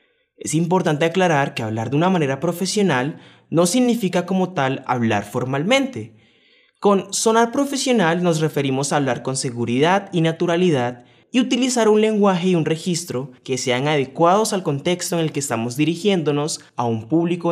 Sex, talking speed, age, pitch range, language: male, 160 wpm, 20-39, 135-195 Hz, English